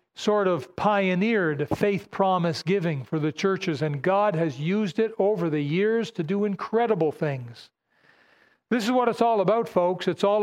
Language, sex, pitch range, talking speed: English, male, 175-220 Hz, 175 wpm